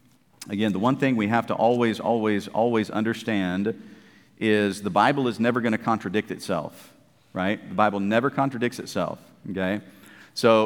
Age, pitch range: 50-69, 105-130 Hz